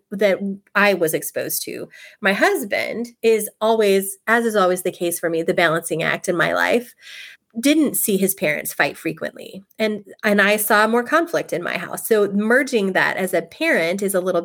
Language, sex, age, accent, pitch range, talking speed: English, female, 30-49, American, 185-235 Hz, 190 wpm